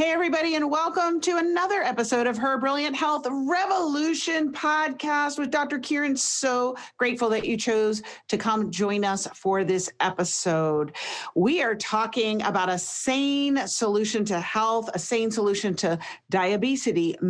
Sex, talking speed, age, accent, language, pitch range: female, 145 wpm, 40-59, American, English, 190-275 Hz